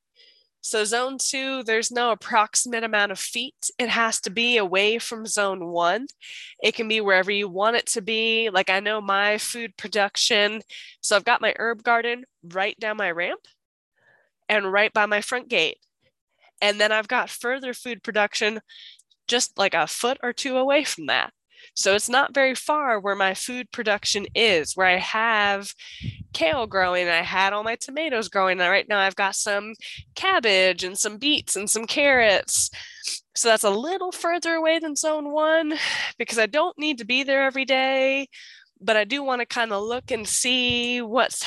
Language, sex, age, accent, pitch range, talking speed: English, female, 10-29, American, 210-270 Hz, 185 wpm